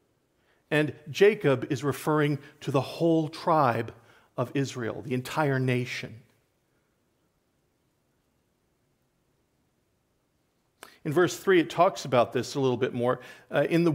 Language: English